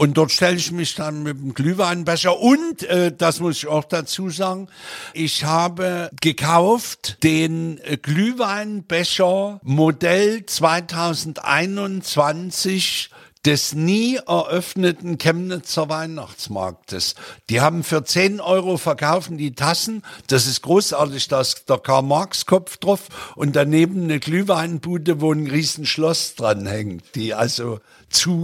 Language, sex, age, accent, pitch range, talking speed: German, male, 60-79, German, 145-180 Hz, 120 wpm